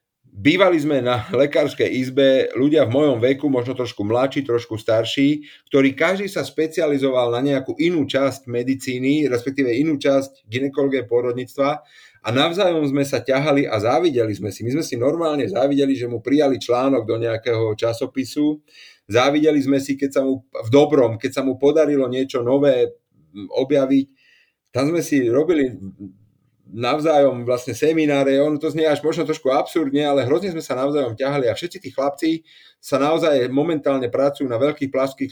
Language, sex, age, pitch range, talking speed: Slovak, male, 30-49, 125-145 Hz, 160 wpm